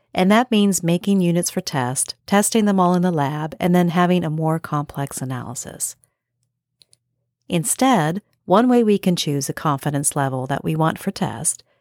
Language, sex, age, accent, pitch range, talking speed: English, female, 50-69, American, 150-200 Hz, 175 wpm